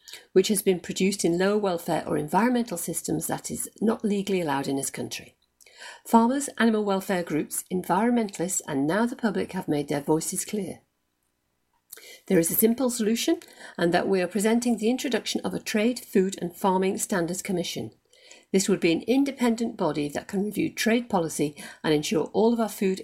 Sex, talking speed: female, 180 wpm